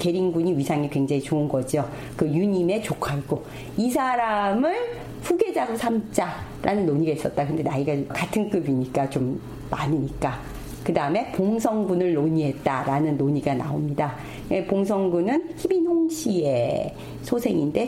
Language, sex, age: Korean, female, 40-59